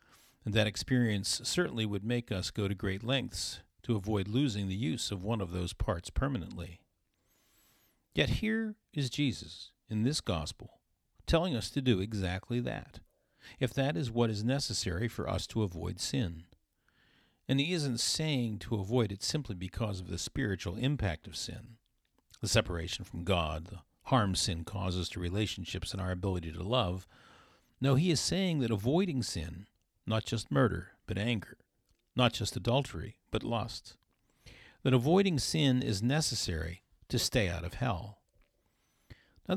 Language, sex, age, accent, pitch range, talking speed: English, male, 50-69, American, 95-125 Hz, 160 wpm